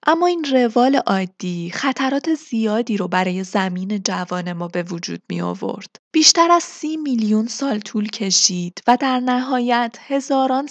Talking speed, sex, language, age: 145 wpm, female, Persian, 20-39